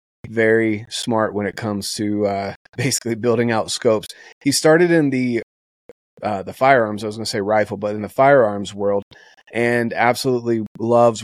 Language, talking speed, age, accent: English, 170 wpm, 30-49, American